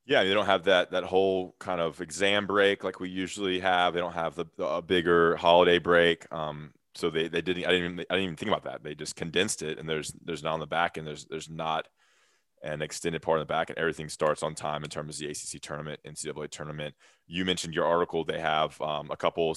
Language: English